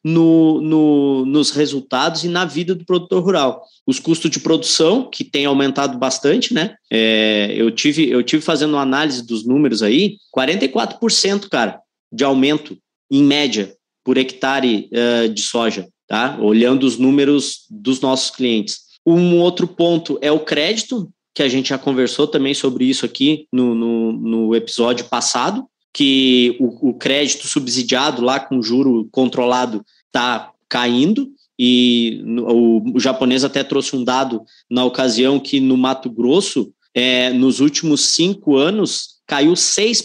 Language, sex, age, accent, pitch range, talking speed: Portuguese, male, 20-39, Brazilian, 130-165 Hz, 150 wpm